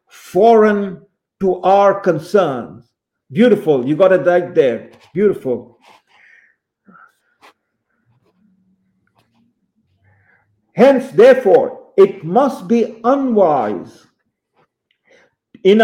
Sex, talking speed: male, 70 wpm